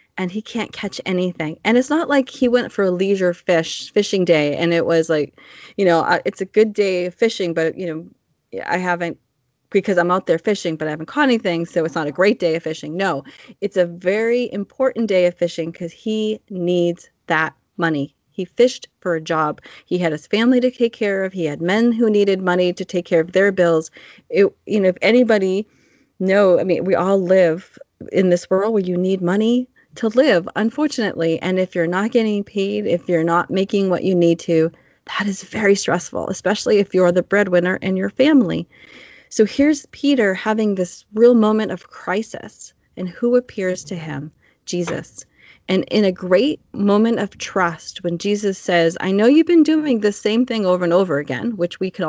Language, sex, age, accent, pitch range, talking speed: English, female, 30-49, American, 175-220 Hz, 205 wpm